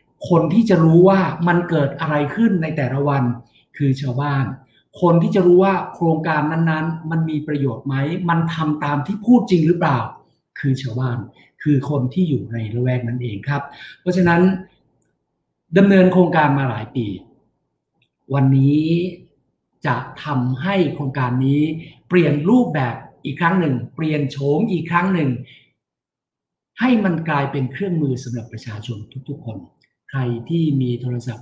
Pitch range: 130-170 Hz